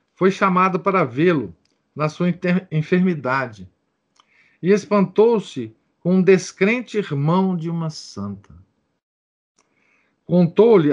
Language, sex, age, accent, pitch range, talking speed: Portuguese, male, 50-69, Brazilian, 120-175 Hz, 95 wpm